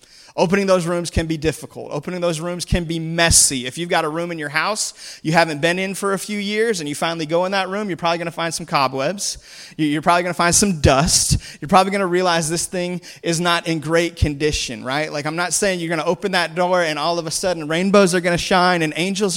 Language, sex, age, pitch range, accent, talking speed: English, male, 30-49, 150-185 Hz, American, 260 wpm